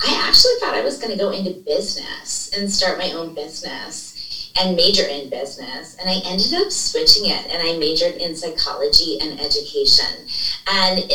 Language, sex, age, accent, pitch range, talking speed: English, female, 30-49, American, 165-220 Hz, 180 wpm